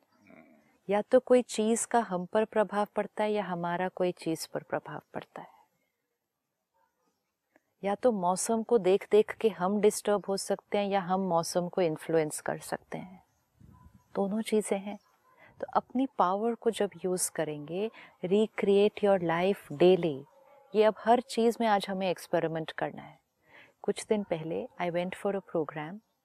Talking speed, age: 160 wpm, 30-49